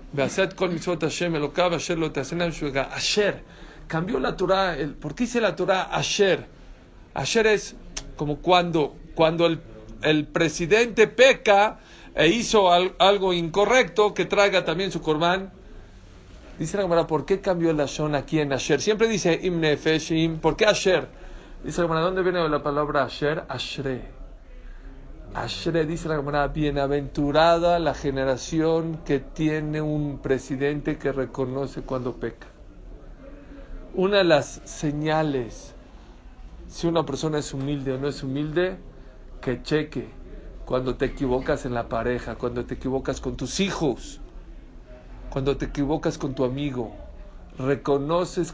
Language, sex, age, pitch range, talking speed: Spanish, male, 50-69, 135-175 Hz, 130 wpm